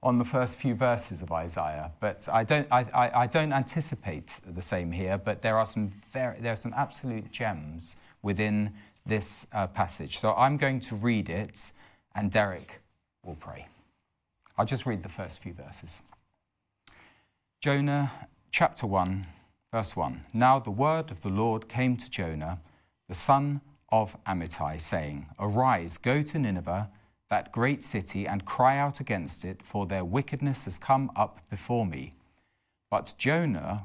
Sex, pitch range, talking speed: male, 90-125 Hz, 150 wpm